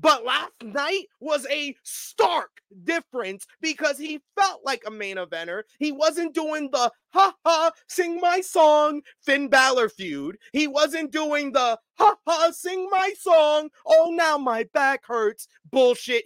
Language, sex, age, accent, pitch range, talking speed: English, male, 30-49, American, 230-325 Hz, 145 wpm